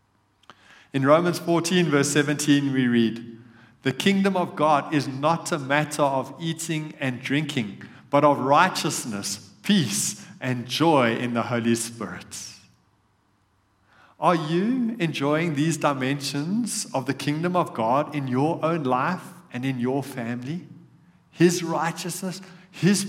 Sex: male